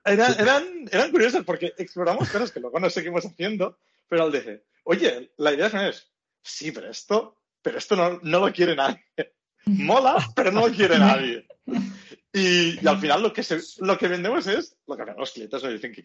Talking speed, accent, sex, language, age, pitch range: 205 wpm, Spanish, male, Spanish, 40-59, 145-200 Hz